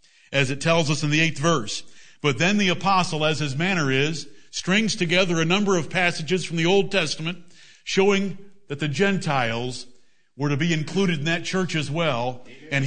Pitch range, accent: 150-185 Hz, American